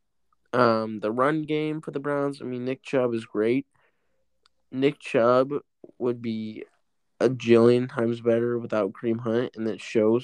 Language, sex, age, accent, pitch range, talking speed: English, male, 20-39, American, 115-130 Hz, 160 wpm